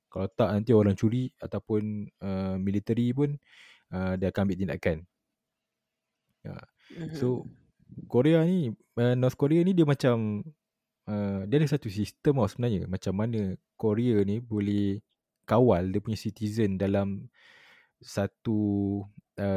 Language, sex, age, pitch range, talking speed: Malay, male, 20-39, 100-125 Hz, 130 wpm